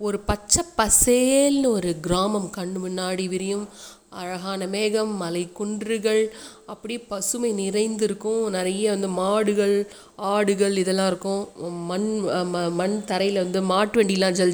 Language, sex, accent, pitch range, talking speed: Tamil, female, native, 185-245 Hz, 115 wpm